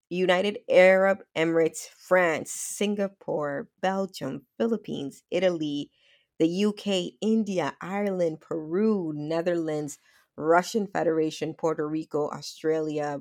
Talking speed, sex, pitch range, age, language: 85 wpm, female, 150-175 Hz, 20-39, English